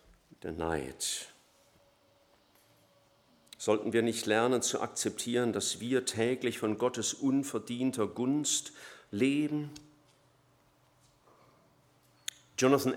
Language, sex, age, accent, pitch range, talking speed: German, male, 50-69, German, 105-135 Hz, 80 wpm